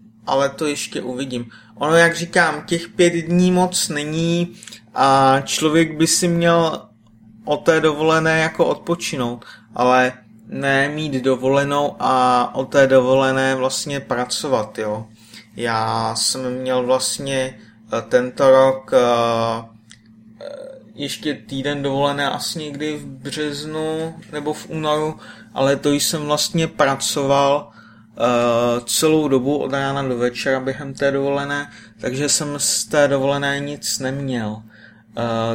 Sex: male